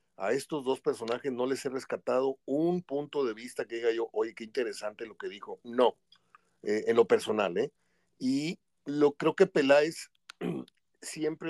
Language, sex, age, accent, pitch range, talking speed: Spanish, male, 40-59, Mexican, 120-180 Hz, 170 wpm